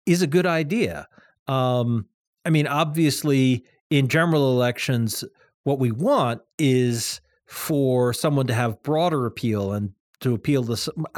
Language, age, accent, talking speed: English, 40-59, American, 140 wpm